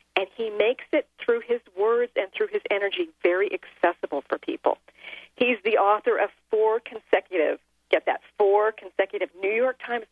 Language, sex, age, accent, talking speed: English, female, 40-59, American, 165 wpm